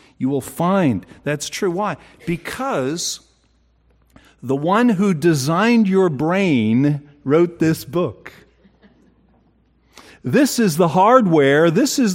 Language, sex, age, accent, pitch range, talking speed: English, male, 50-69, American, 120-195 Hz, 110 wpm